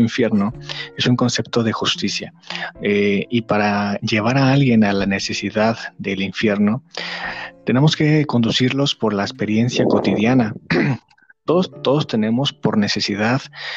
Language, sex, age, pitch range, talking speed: Spanish, male, 40-59, 105-130 Hz, 125 wpm